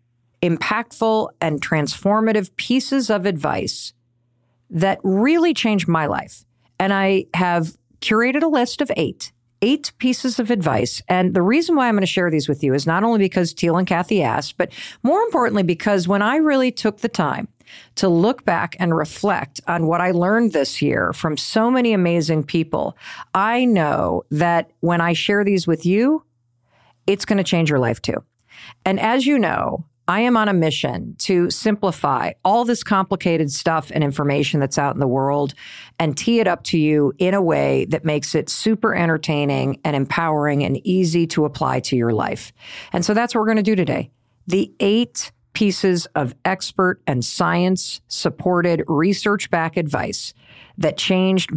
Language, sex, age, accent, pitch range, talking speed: English, female, 50-69, American, 150-205 Hz, 175 wpm